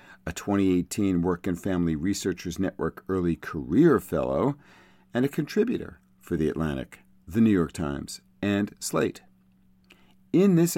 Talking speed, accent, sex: 135 wpm, American, male